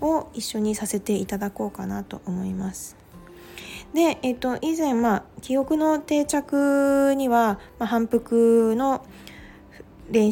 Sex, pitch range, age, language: female, 195-260 Hz, 20-39, Japanese